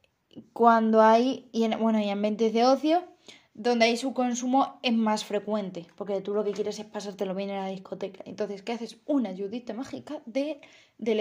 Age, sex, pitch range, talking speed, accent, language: 20-39, female, 210-260 Hz, 185 wpm, Spanish, Spanish